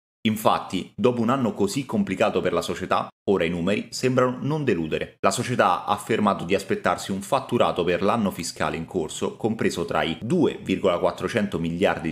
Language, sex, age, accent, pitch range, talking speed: Italian, male, 30-49, native, 95-140 Hz, 165 wpm